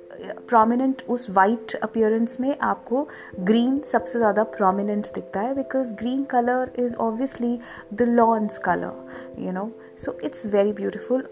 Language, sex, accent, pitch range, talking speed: Hindi, female, native, 180-235 Hz, 140 wpm